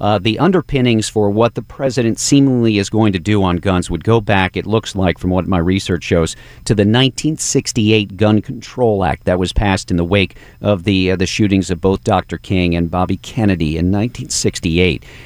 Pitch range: 95-120 Hz